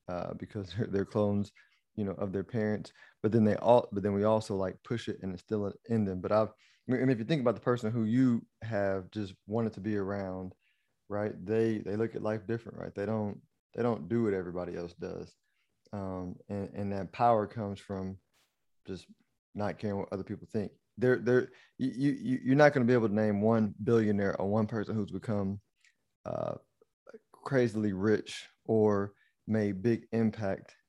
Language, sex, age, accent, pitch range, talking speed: English, male, 30-49, American, 100-115 Hz, 190 wpm